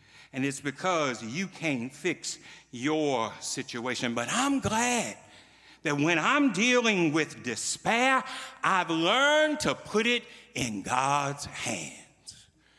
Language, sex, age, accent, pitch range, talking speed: English, male, 60-79, American, 120-175 Hz, 115 wpm